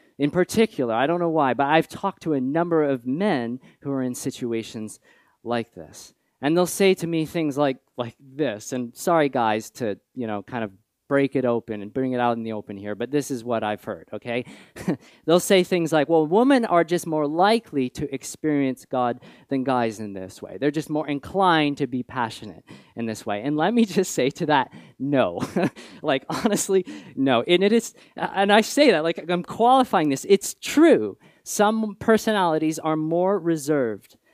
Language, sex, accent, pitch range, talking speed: English, male, American, 120-190 Hz, 195 wpm